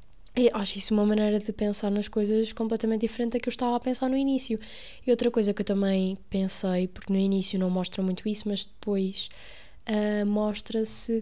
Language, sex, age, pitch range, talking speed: Portuguese, female, 20-39, 185-220 Hz, 200 wpm